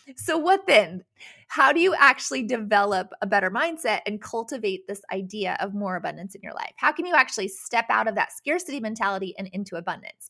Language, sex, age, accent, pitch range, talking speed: English, female, 20-39, American, 200-275 Hz, 200 wpm